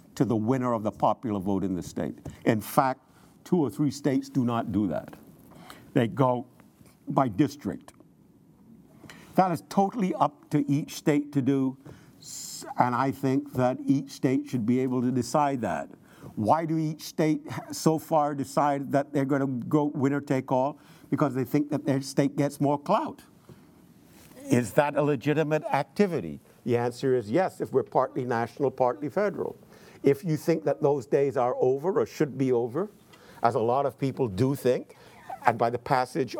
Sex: male